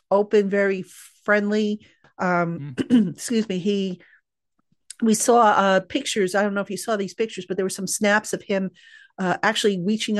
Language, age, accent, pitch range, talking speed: English, 50-69, American, 195-240 Hz, 170 wpm